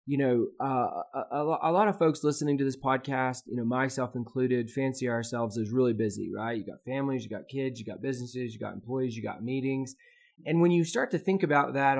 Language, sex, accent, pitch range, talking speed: English, male, American, 120-140 Hz, 225 wpm